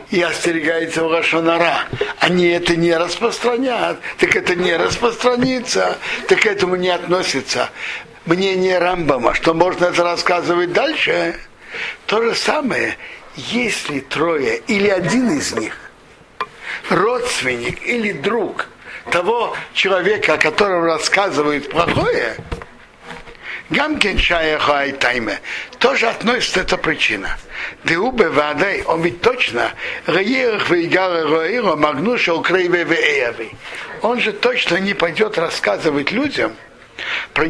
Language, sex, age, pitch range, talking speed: Russian, male, 60-79, 165-240 Hz, 90 wpm